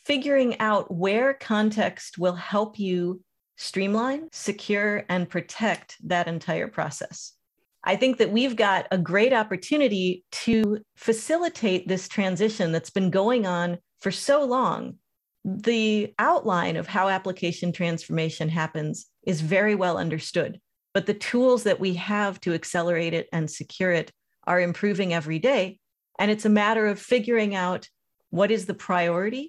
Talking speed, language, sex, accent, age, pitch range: 145 wpm, English, female, American, 40-59, 175-215 Hz